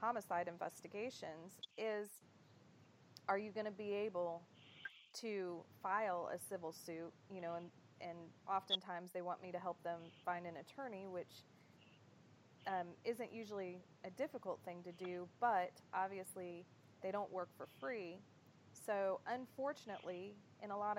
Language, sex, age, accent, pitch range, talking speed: English, female, 30-49, American, 175-210 Hz, 140 wpm